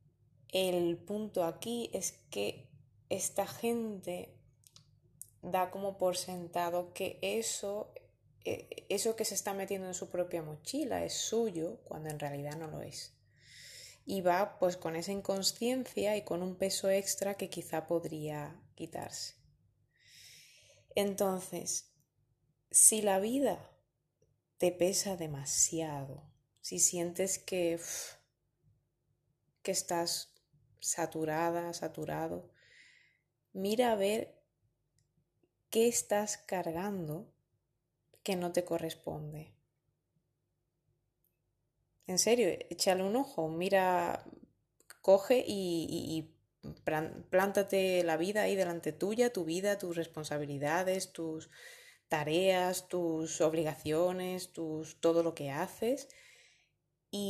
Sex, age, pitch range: female, 20-39, 155-195 Hz